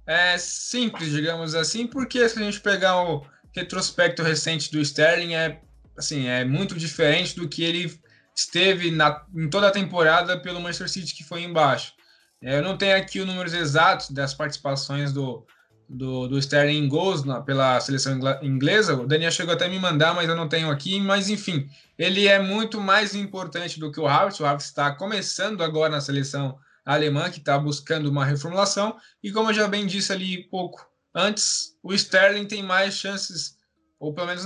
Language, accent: Portuguese, Brazilian